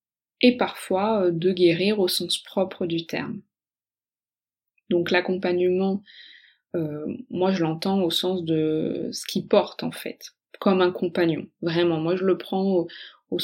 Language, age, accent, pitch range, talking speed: French, 20-39, French, 165-195 Hz, 145 wpm